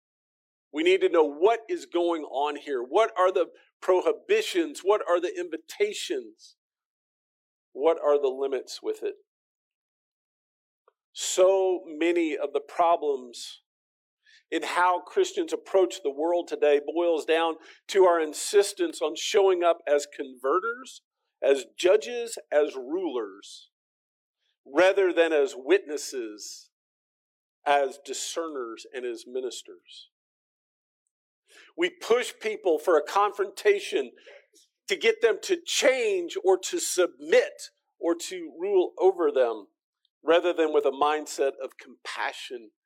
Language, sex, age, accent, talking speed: English, male, 50-69, American, 120 wpm